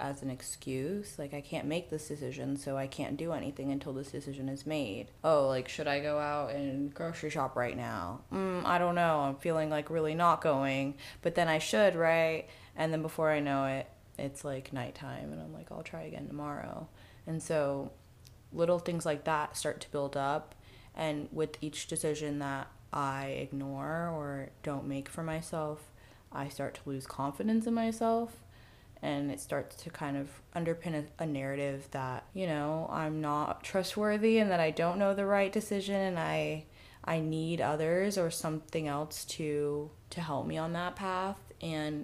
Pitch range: 135-165 Hz